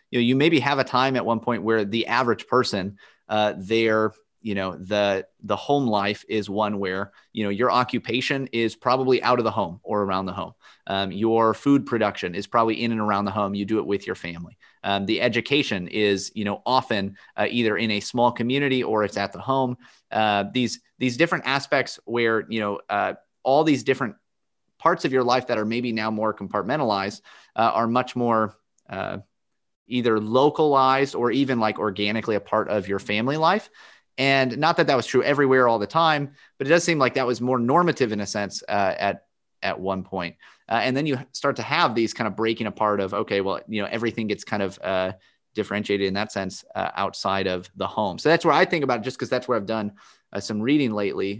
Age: 30-49